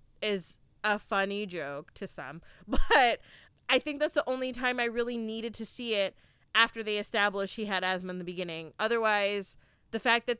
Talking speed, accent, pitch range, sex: 185 wpm, American, 200-265 Hz, female